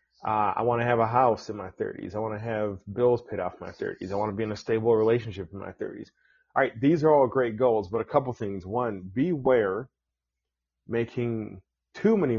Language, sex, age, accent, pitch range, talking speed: English, male, 30-49, American, 100-125 Hz, 225 wpm